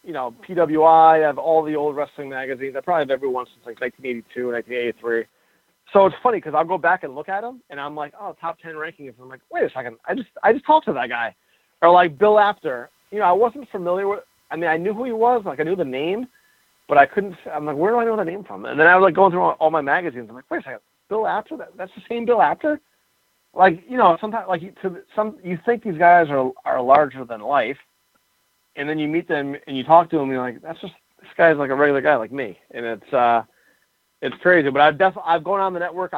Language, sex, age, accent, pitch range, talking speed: English, male, 30-49, American, 130-180 Hz, 270 wpm